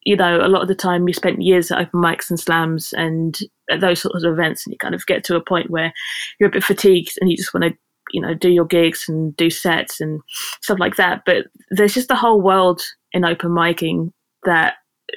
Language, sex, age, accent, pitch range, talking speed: English, female, 20-39, British, 175-205 Hz, 240 wpm